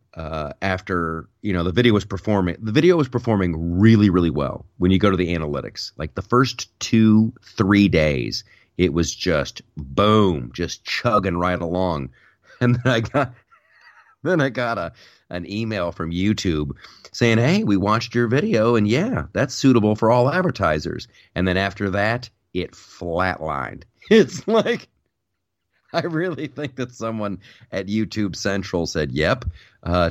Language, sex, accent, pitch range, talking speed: English, male, American, 85-115 Hz, 155 wpm